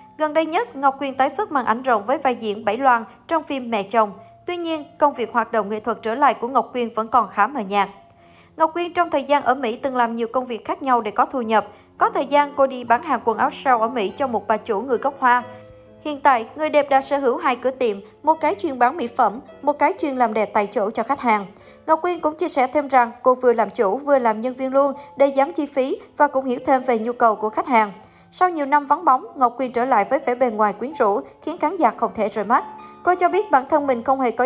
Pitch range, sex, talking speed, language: 230-290 Hz, male, 280 wpm, Vietnamese